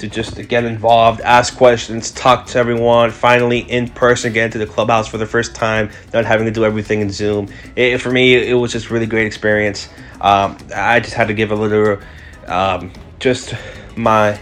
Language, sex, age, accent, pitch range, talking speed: English, male, 20-39, American, 105-120 Hz, 205 wpm